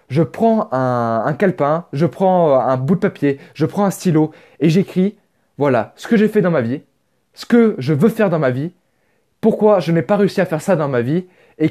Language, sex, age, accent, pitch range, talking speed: French, male, 20-39, French, 155-200 Hz, 230 wpm